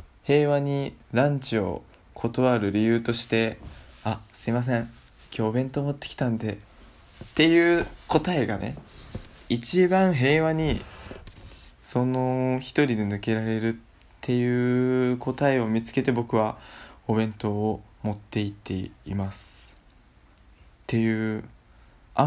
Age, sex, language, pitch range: 20-39, male, Japanese, 105-140 Hz